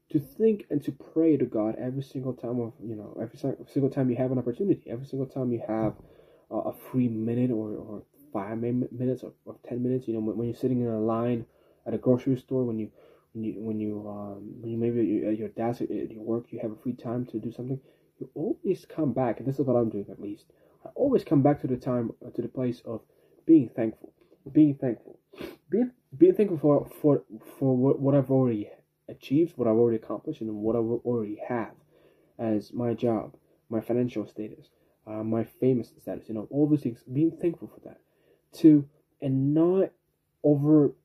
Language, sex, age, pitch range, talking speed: English, male, 10-29, 115-135 Hz, 210 wpm